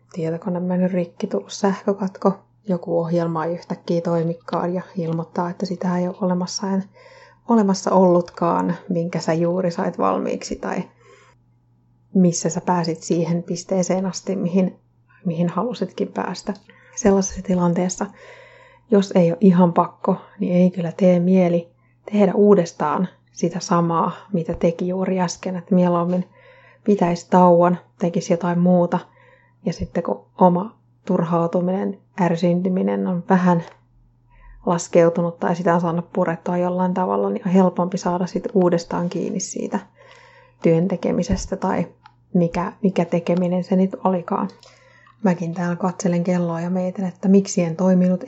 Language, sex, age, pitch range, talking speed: Finnish, female, 30-49, 170-190 Hz, 130 wpm